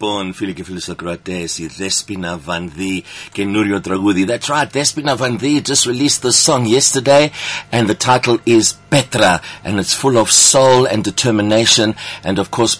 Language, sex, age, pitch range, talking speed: English, male, 60-79, 95-120 Hz, 115 wpm